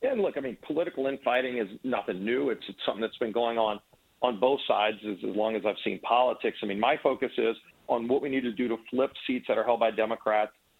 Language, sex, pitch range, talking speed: English, male, 110-145 Hz, 250 wpm